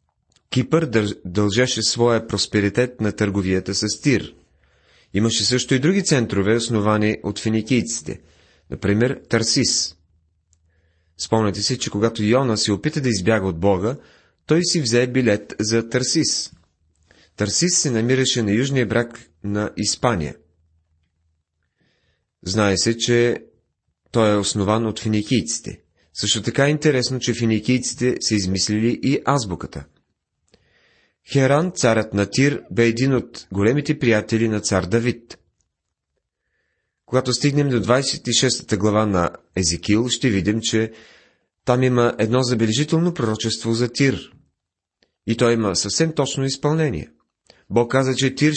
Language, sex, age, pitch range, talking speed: Bulgarian, male, 30-49, 100-130 Hz, 125 wpm